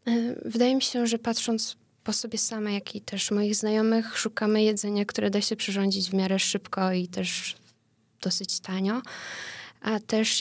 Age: 20-39